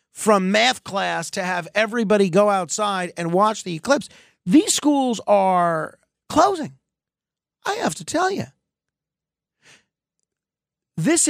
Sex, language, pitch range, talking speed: male, English, 180-255 Hz, 115 wpm